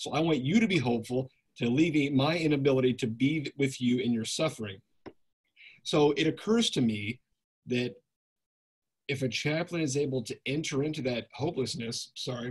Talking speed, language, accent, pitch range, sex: 170 wpm, English, American, 120-150 Hz, male